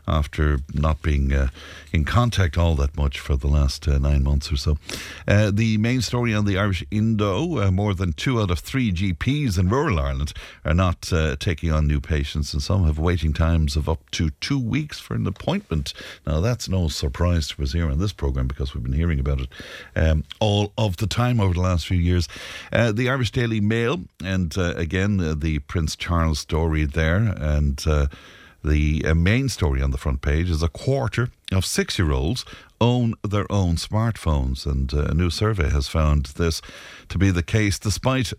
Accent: Irish